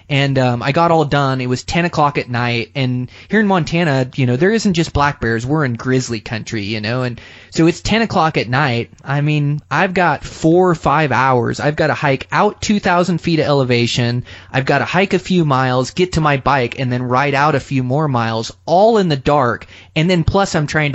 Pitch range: 130-180 Hz